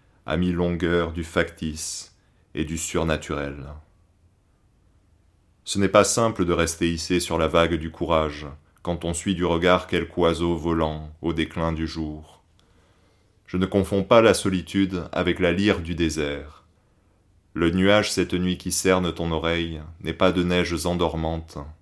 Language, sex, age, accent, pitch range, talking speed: French, male, 30-49, French, 80-95 Hz, 150 wpm